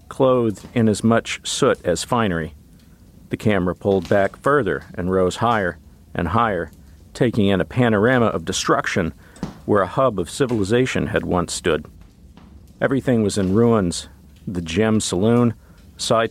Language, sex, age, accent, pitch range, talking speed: English, male, 50-69, American, 90-115 Hz, 145 wpm